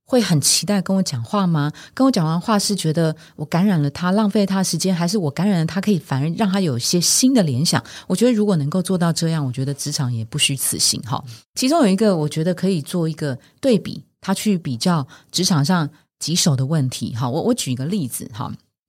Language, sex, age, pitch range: Chinese, female, 30-49, 140-200 Hz